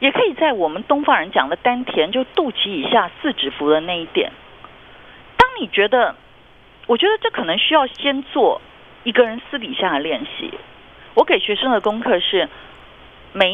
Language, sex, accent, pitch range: Chinese, female, native, 215-310 Hz